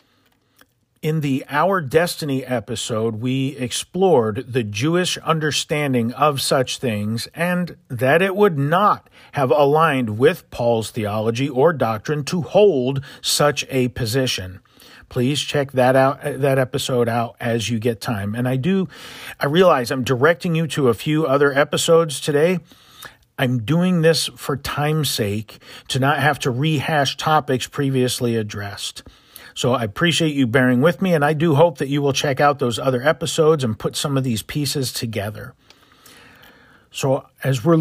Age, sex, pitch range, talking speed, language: 50-69, male, 120-160 Hz, 155 wpm, English